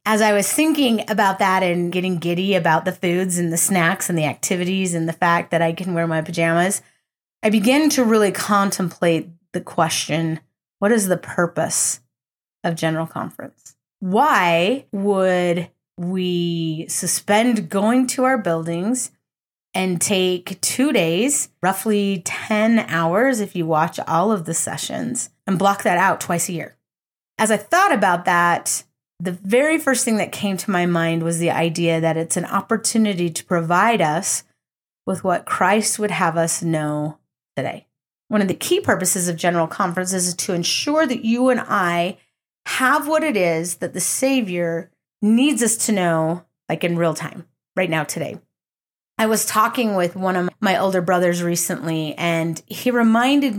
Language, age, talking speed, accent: English, 30-49, 165 wpm, American